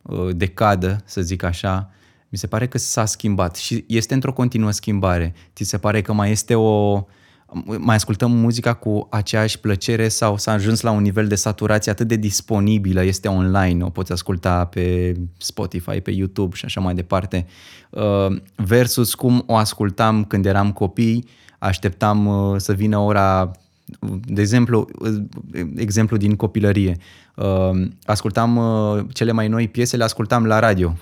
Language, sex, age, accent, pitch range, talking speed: Romanian, male, 20-39, native, 95-115 Hz, 150 wpm